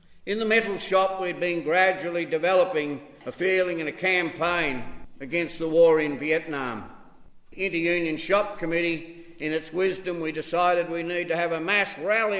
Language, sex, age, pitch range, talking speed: English, male, 50-69, 155-190 Hz, 165 wpm